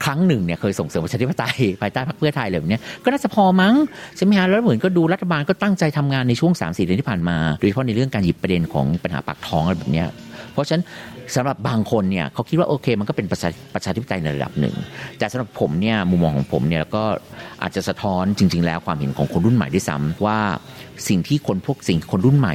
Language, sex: Thai, male